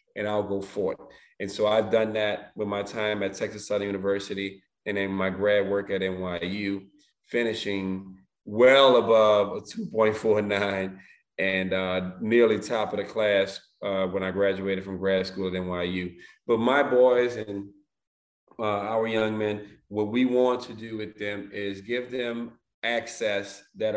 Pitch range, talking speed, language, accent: 100-110 Hz, 160 wpm, English, American